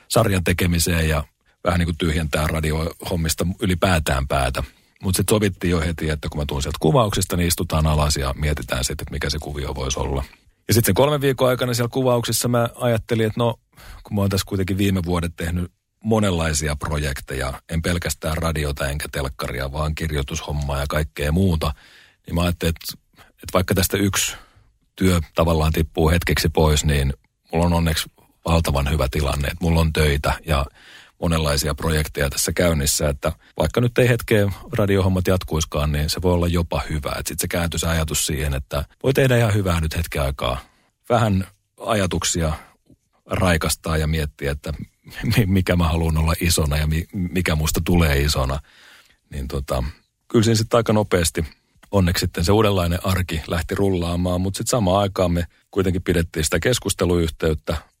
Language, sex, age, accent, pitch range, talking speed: Finnish, male, 40-59, native, 75-95 Hz, 165 wpm